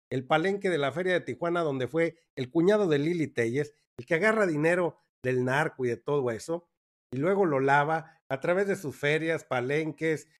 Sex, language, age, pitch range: male, Spanish, 50-69, 140-180 Hz